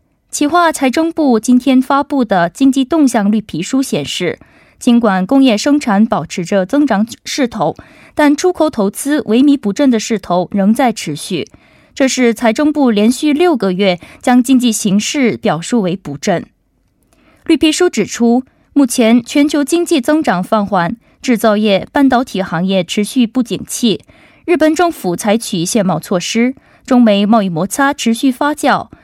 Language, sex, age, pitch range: Korean, female, 20-39, 205-275 Hz